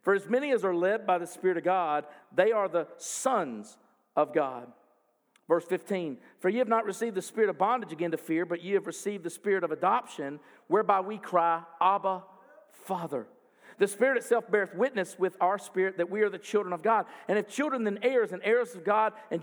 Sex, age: male, 50-69